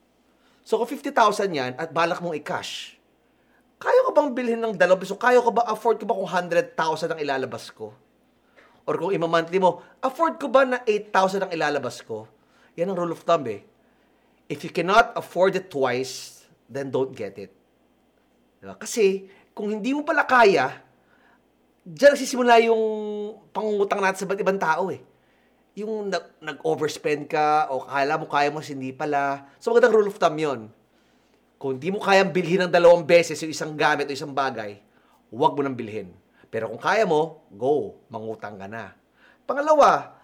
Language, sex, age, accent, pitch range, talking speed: Filipino, male, 30-49, native, 150-240 Hz, 170 wpm